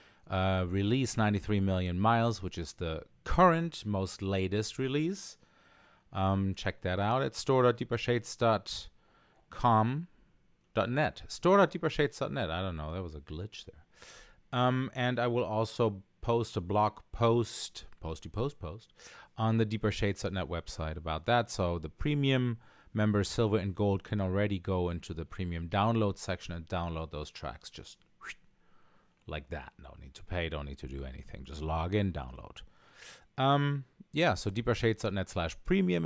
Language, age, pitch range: English, 30-49, 90-120 Hz